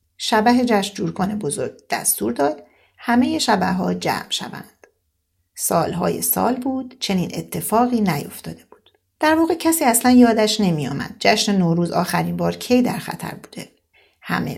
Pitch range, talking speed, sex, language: 180-250 Hz, 135 wpm, female, Persian